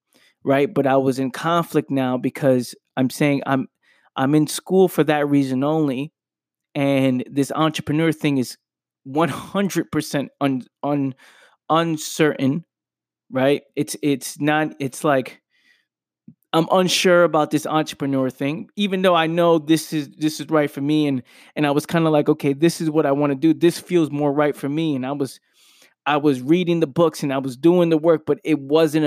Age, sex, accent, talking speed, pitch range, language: 20-39, male, American, 185 wpm, 140-170 Hz, English